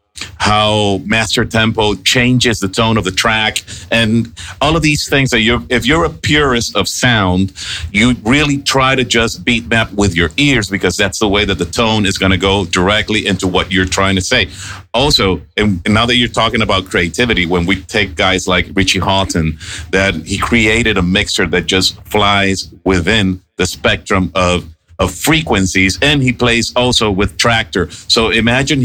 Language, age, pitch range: English, 50-69, 95-120 Hz